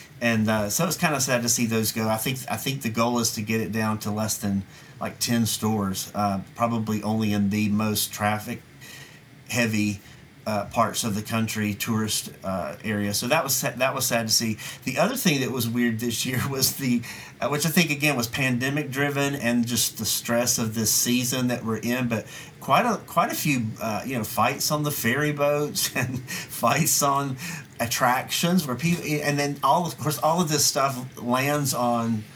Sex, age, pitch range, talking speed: male, 40-59, 115-145 Hz, 205 wpm